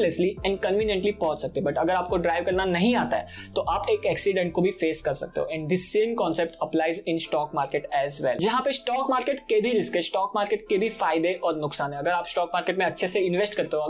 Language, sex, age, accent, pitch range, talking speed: Hindi, male, 20-39, native, 170-210 Hz, 140 wpm